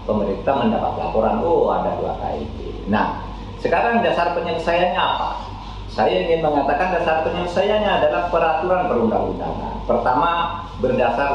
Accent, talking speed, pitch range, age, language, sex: native, 115 wpm, 105-160 Hz, 40-59, Indonesian, male